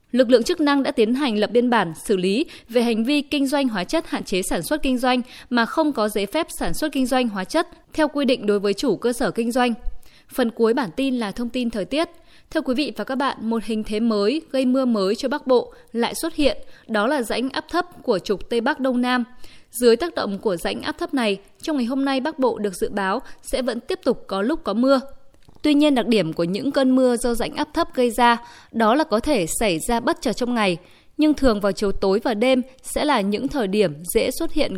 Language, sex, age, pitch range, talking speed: Vietnamese, female, 20-39, 220-275 Hz, 255 wpm